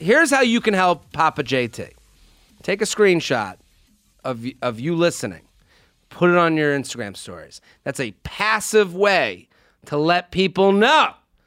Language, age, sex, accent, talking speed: English, 40-59, male, American, 145 wpm